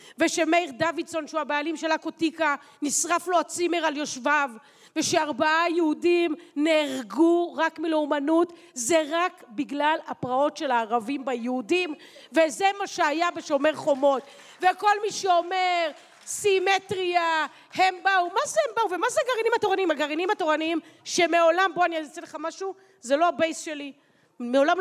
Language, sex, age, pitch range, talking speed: Hebrew, female, 40-59, 300-385 Hz, 135 wpm